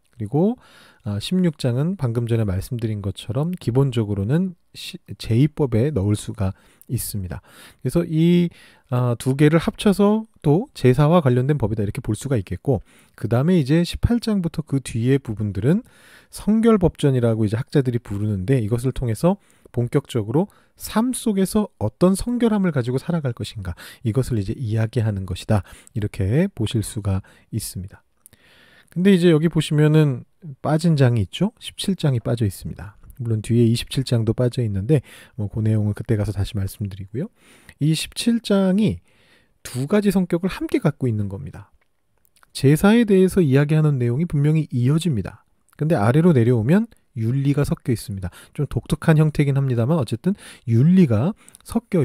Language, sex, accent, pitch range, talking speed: English, male, Korean, 110-170 Hz, 120 wpm